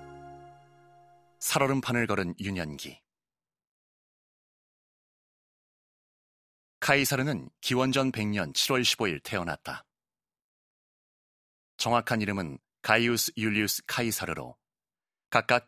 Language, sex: Korean, male